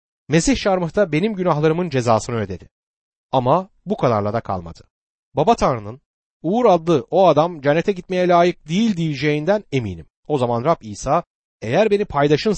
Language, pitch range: Turkish, 115-180 Hz